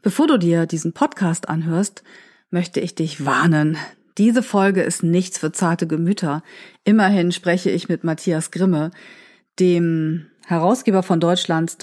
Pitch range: 175-220 Hz